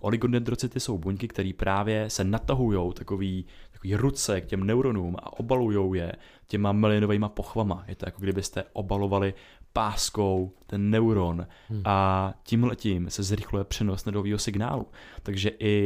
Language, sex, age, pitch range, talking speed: Czech, male, 20-39, 95-110 Hz, 135 wpm